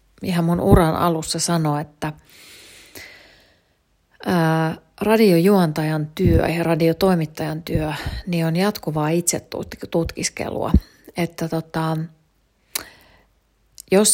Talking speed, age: 80 wpm, 30-49